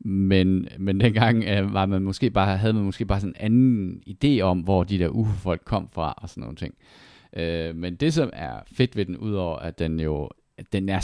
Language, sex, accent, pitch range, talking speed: Danish, male, native, 85-100 Hz, 210 wpm